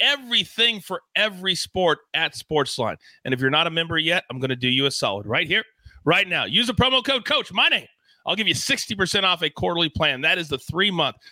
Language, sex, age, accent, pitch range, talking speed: English, male, 40-59, American, 150-210 Hz, 230 wpm